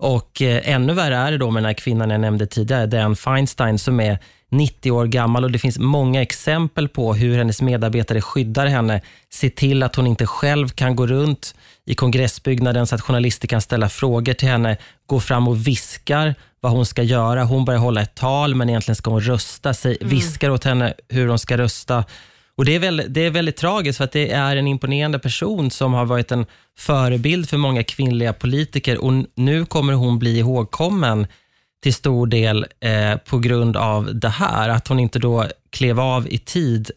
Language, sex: Swedish, male